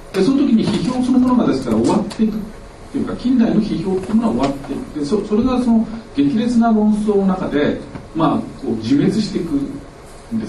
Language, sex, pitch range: Japanese, male, 145-225 Hz